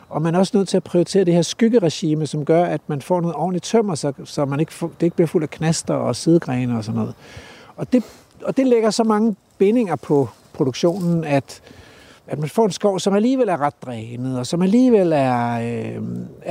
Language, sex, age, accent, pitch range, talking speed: Danish, male, 60-79, native, 150-200 Hz, 220 wpm